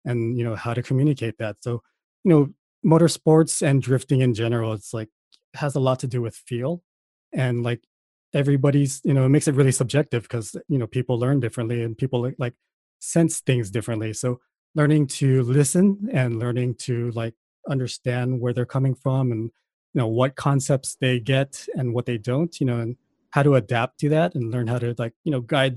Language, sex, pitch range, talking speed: English, male, 120-140 Hz, 200 wpm